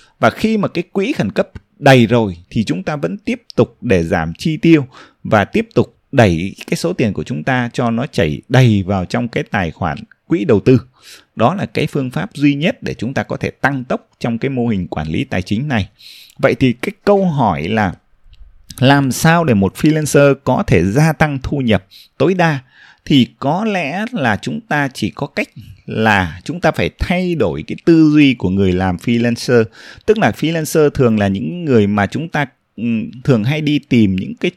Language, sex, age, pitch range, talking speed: Vietnamese, male, 20-39, 110-160 Hz, 210 wpm